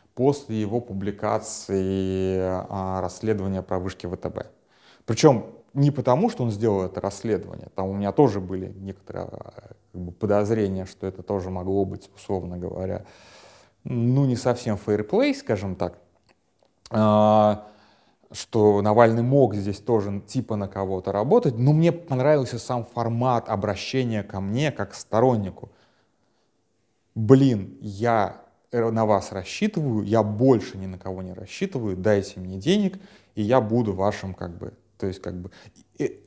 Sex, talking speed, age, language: male, 140 wpm, 30-49, Russian